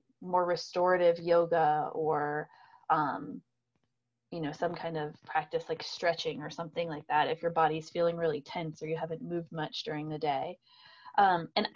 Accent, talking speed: American, 170 wpm